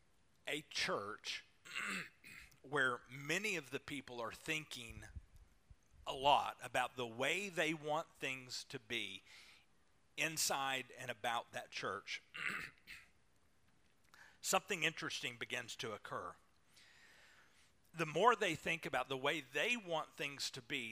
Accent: American